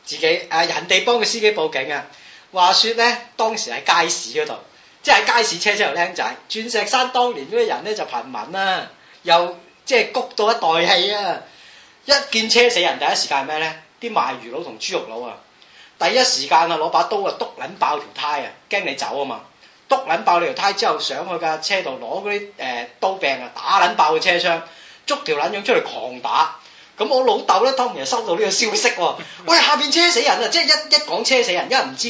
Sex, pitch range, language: male, 200-280 Hz, Chinese